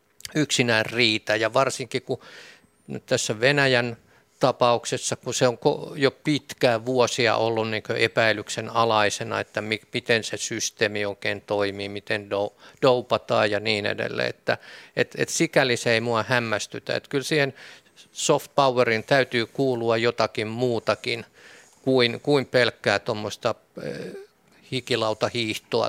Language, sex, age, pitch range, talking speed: Finnish, male, 50-69, 110-130 Hz, 120 wpm